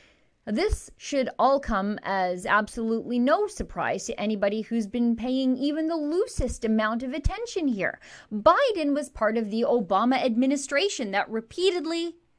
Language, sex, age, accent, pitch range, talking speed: English, female, 30-49, American, 225-320 Hz, 140 wpm